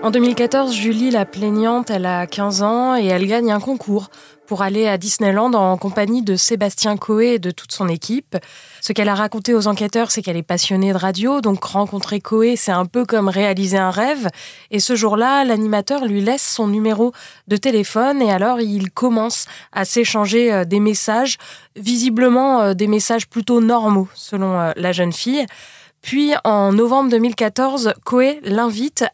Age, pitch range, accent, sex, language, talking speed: 20-39, 200-240 Hz, French, female, French, 170 wpm